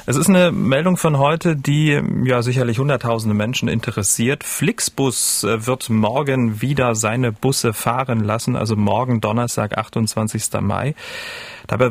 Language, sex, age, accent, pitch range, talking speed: German, male, 30-49, German, 110-140 Hz, 130 wpm